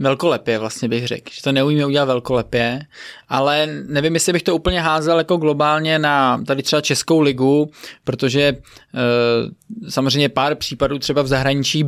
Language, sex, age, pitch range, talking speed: Czech, male, 20-39, 130-150 Hz, 155 wpm